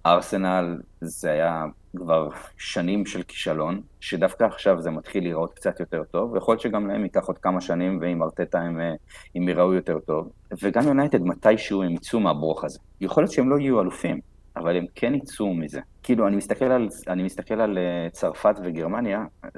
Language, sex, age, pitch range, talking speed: Hebrew, male, 30-49, 85-115 Hz, 175 wpm